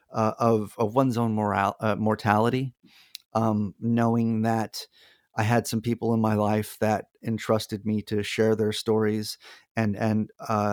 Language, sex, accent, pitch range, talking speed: English, male, American, 110-125 Hz, 145 wpm